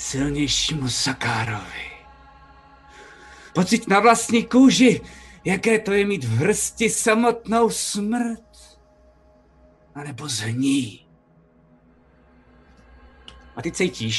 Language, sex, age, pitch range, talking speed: Czech, male, 30-49, 115-155 Hz, 80 wpm